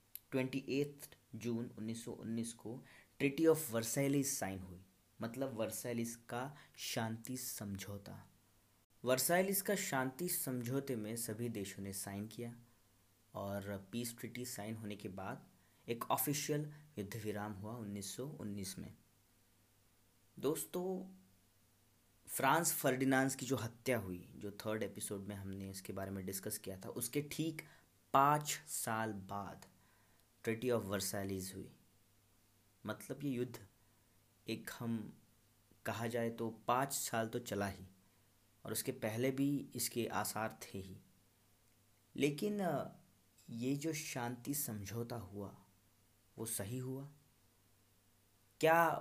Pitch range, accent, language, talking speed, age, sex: 100-130 Hz, native, Hindi, 120 wpm, 20-39, male